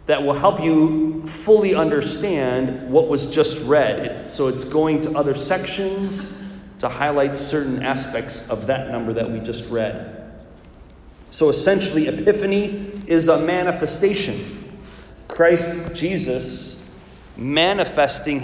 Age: 30-49